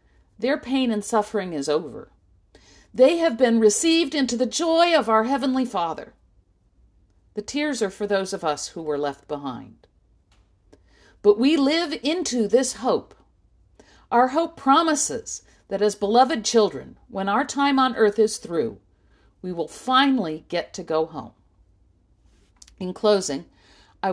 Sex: female